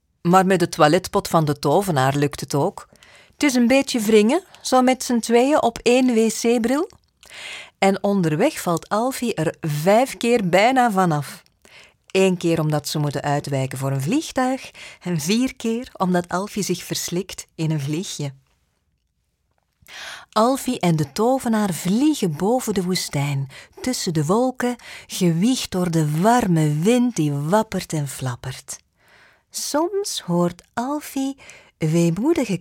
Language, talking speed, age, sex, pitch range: Dutch, 135 wpm, 40-59, female, 145-235 Hz